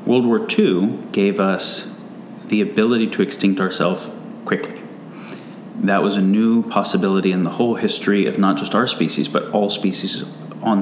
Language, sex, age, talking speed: English, male, 30-49, 160 wpm